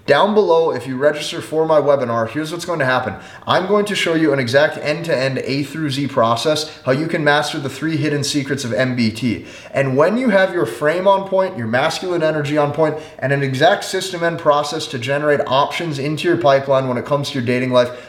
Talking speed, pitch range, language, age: 230 wpm, 135-170 Hz, English, 30-49